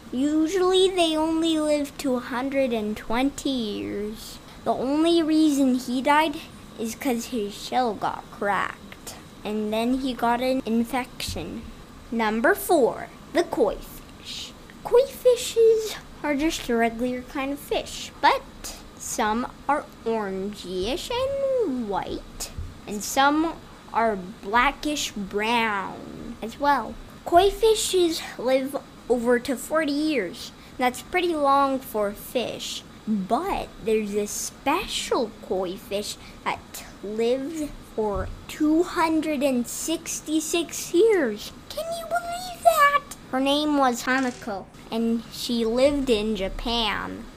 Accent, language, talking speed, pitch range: American, English, 110 wpm, 230-315 Hz